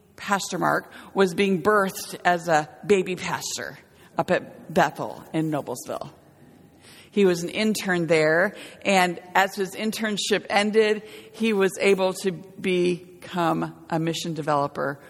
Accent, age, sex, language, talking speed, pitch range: American, 50-69, female, English, 125 wpm, 175-215 Hz